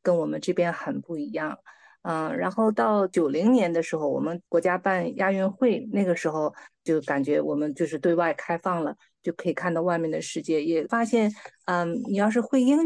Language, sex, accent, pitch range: Chinese, female, native, 175-230 Hz